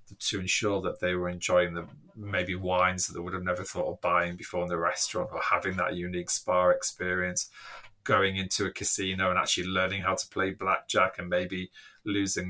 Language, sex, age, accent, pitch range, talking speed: English, male, 30-49, British, 90-100 Hz, 195 wpm